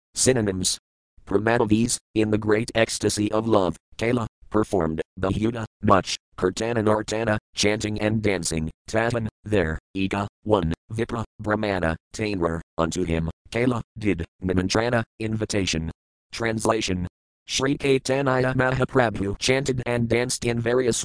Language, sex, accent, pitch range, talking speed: English, male, American, 100-120 Hz, 115 wpm